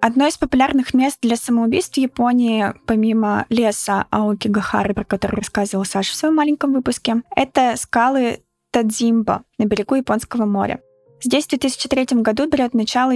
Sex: female